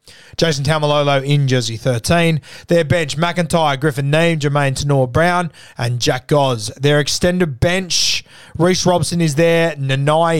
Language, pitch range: English, 130-165 Hz